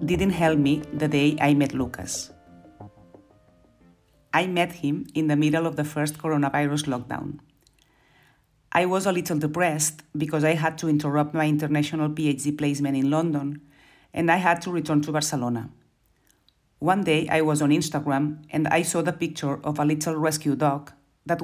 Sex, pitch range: female, 140-160 Hz